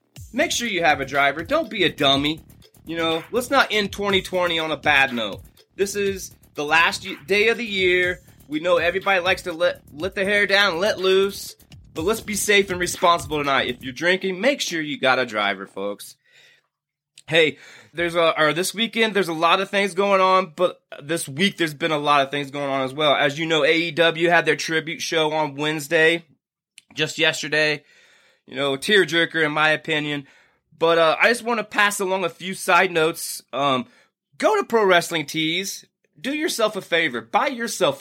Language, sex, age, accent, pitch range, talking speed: English, male, 20-39, American, 150-195 Hz, 195 wpm